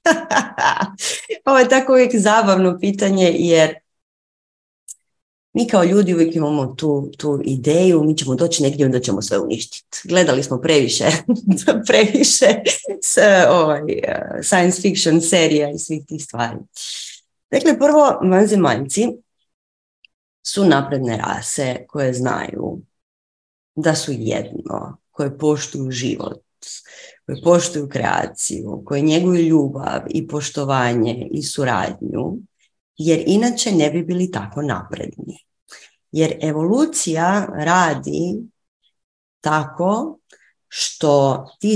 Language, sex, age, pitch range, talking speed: Croatian, female, 30-49, 140-190 Hz, 105 wpm